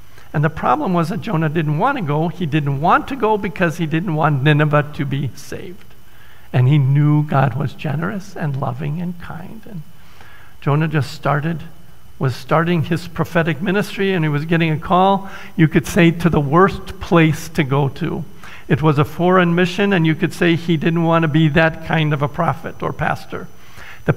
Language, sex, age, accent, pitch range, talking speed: English, male, 50-69, American, 150-180 Hz, 200 wpm